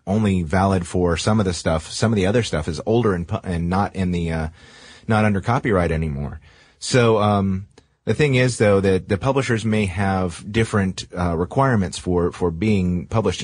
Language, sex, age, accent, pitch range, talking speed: English, male, 30-49, American, 90-110 Hz, 190 wpm